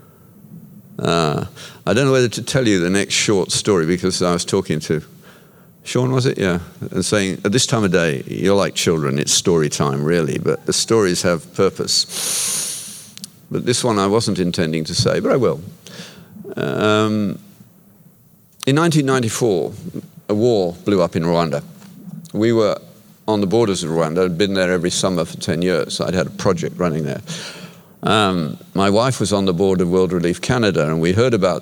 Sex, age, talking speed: male, 50-69, 185 wpm